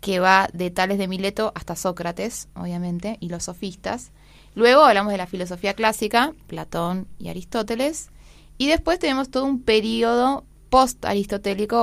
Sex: female